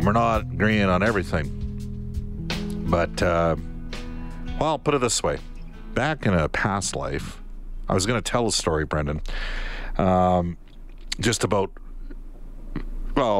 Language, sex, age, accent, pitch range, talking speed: English, male, 50-69, American, 80-105 Hz, 135 wpm